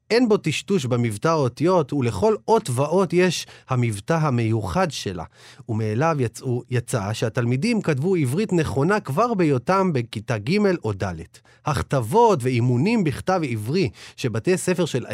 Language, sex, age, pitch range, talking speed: Hebrew, male, 30-49, 115-175 Hz, 125 wpm